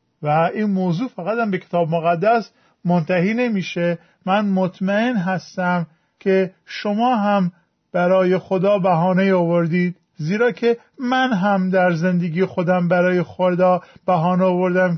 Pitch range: 175-210 Hz